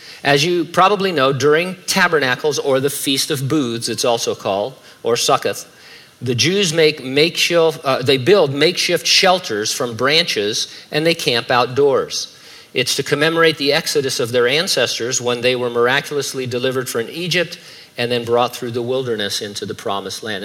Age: 50-69